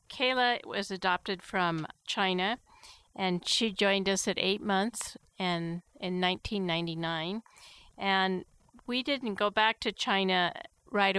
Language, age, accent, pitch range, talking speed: English, 50-69, American, 175-205 Hz, 125 wpm